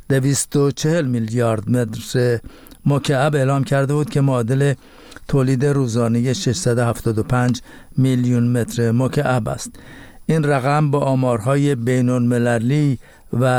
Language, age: Persian, 50-69